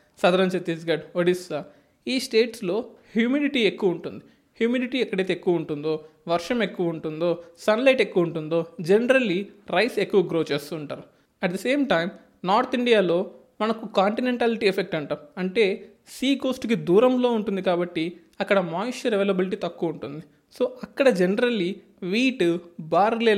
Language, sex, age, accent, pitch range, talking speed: Telugu, male, 20-39, native, 175-230 Hz, 125 wpm